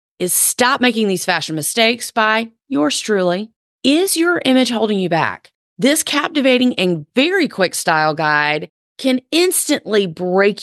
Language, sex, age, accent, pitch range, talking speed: English, female, 30-49, American, 170-240 Hz, 140 wpm